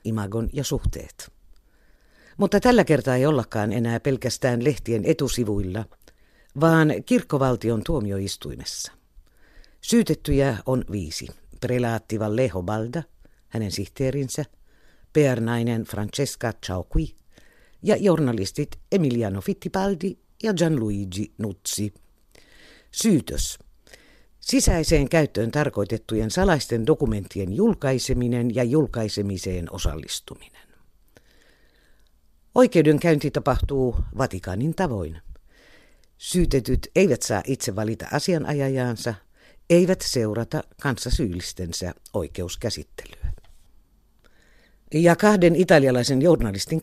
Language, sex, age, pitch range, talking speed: Finnish, female, 50-69, 105-155 Hz, 75 wpm